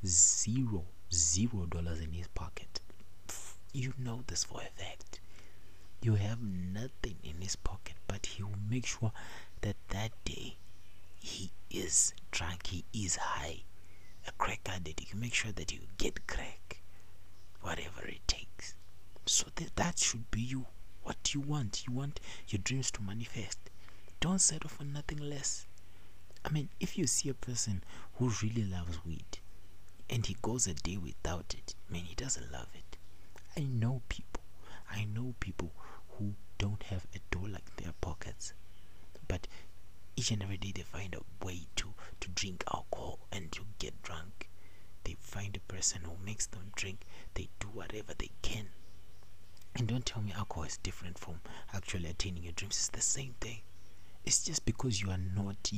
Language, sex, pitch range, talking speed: English, male, 90-110 Hz, 165 wpm